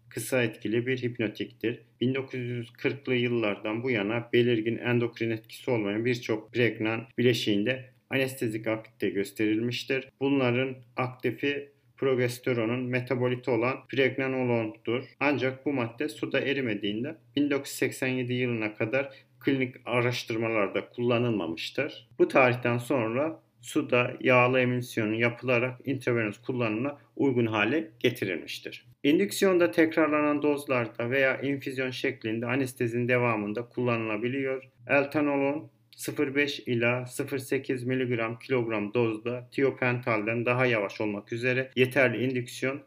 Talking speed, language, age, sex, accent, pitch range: 100 wpm, Turkish, 50-69, male, native, 120-140 Hz